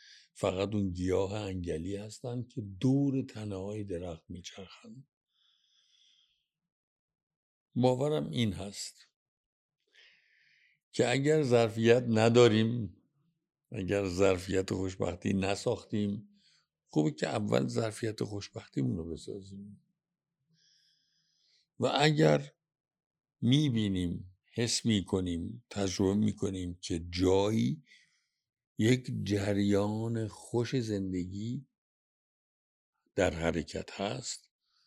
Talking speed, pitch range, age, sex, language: 75 wpm, 95-125 Hz, 60-79, male, Persian